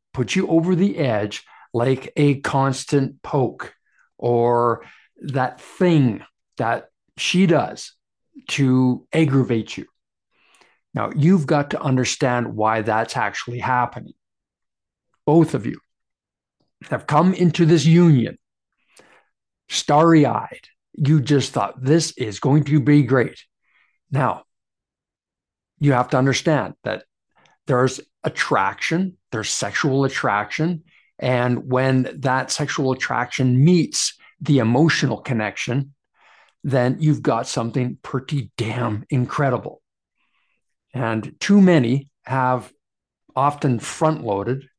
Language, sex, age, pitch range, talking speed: English, male, 60-79, 125-155 Hz, 105 wpm